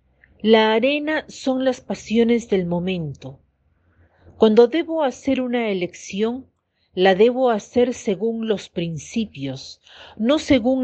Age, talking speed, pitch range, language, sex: 50-69, 110 wpm, 170-230 Hz, Spanish, female